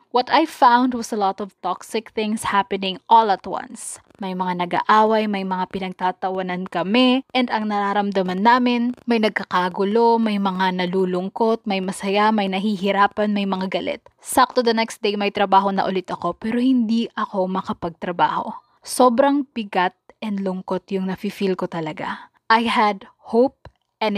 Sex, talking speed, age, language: female, 155 wpm, 20-39, English